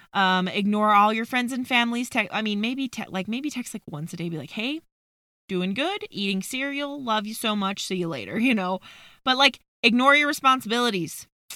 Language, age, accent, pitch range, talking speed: English, 20-39, American, 185-230 Hz, 210 wpm